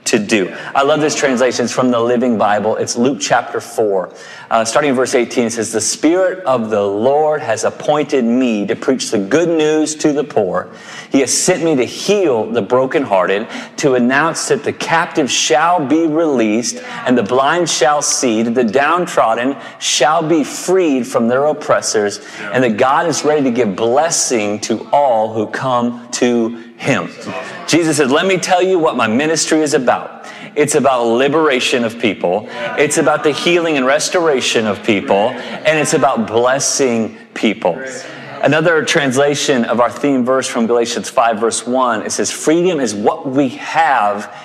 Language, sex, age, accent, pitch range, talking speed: English, male, 30-49, American, 115-155 Hz, 170 wpm